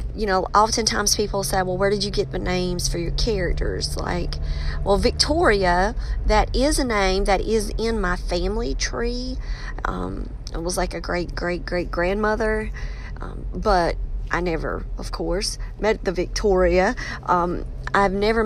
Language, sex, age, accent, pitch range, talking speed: English, female, 40-59, American, 170-215 Hz, 160 wpm